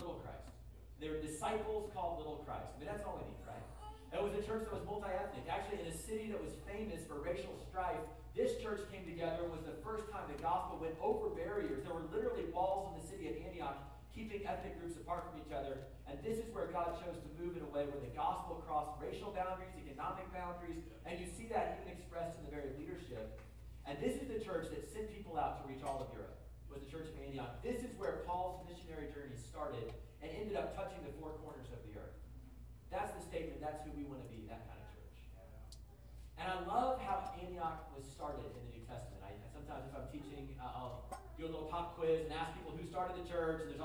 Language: English